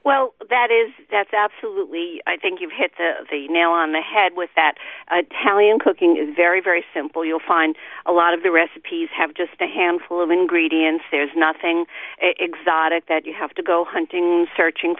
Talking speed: 190 wpm